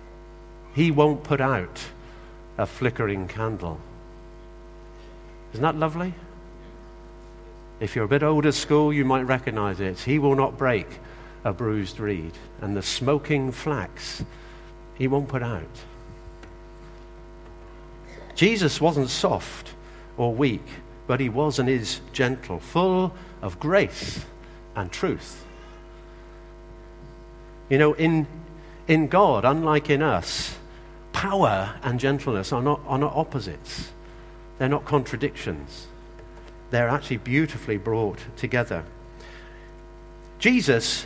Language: English